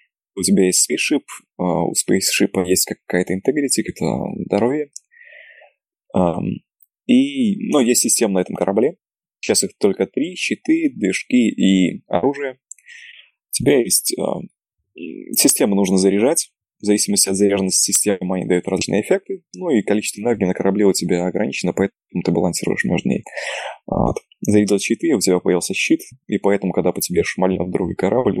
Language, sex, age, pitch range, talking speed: Russian, male, 20-39, 90-135 Hz, 150 wpm